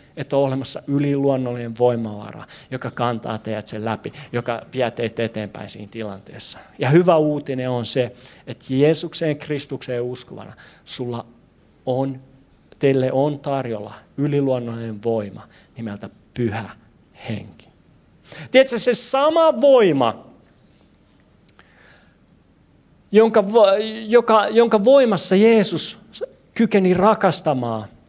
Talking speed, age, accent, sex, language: 90 wpm, 40-59, native, male, Finnish